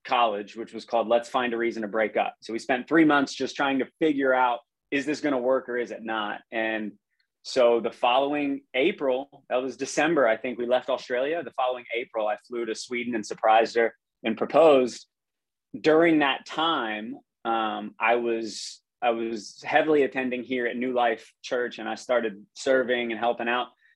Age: 20-39